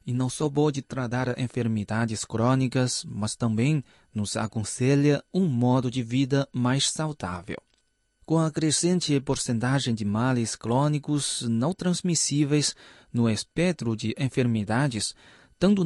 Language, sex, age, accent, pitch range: Chinese, male, 20-39, Brazilian, 115-160 Hz